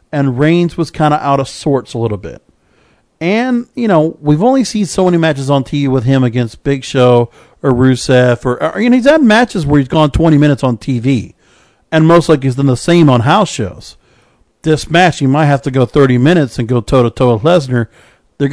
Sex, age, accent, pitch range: male, 40-59, American, 135-165 Hz